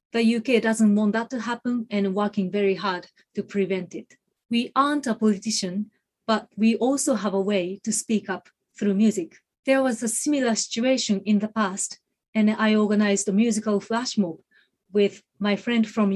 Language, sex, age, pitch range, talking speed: English, female, 30-49, 190-220 Hz, 180 wpm